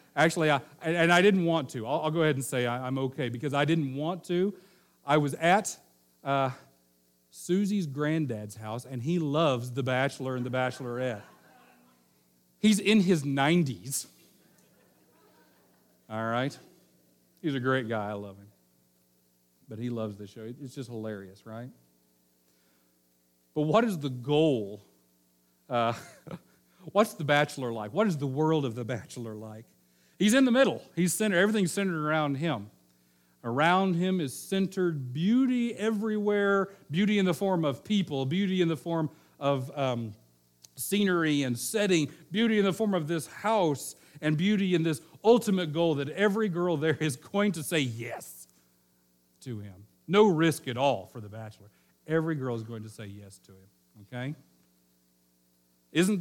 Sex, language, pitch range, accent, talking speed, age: male, English, 105-170 Hz, American, 155 wpm, 40-59